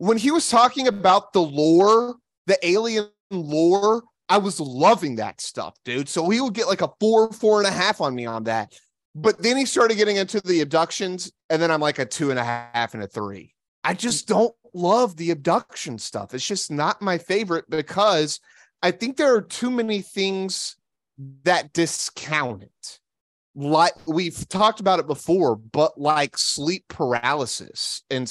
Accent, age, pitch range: American, 30-49, 145-195 Hz